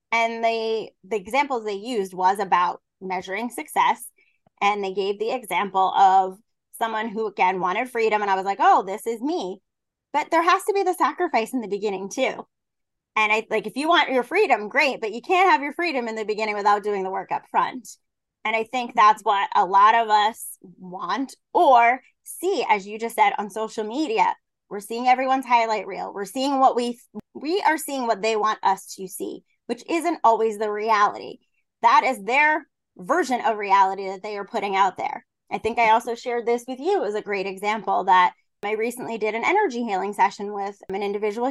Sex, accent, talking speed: female, American, 205 wpm